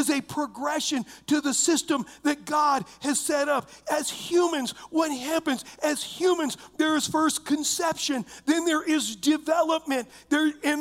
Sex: male